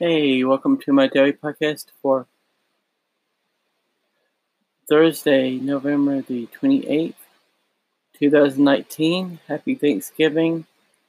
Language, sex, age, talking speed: English, male, 20-39, 75 wpm